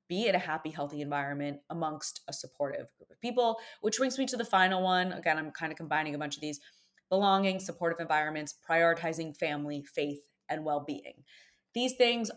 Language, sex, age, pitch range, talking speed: English, female, 20-39, 155-230 Hz, 185 wpm